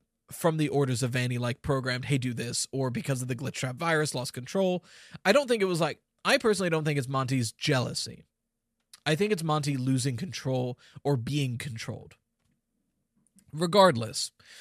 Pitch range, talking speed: 130-180 Hz, 175 wpm